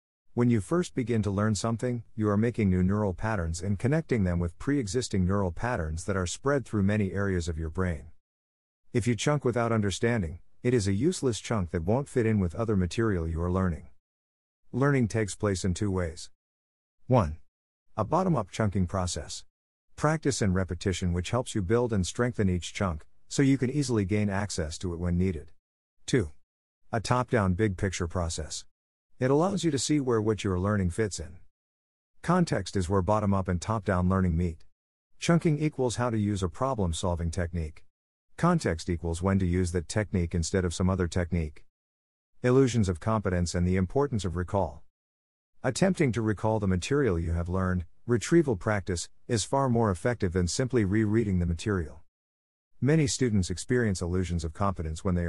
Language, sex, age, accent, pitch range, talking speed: English, male, 50-69, American, 85-115 Hz, 175 wpm